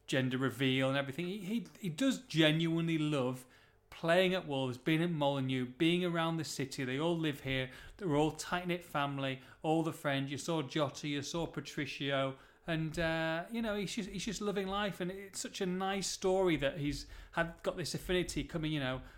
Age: 30-49